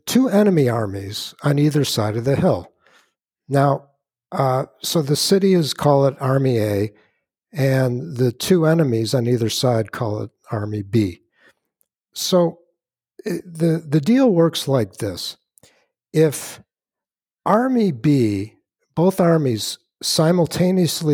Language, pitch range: English, 115-150 Hz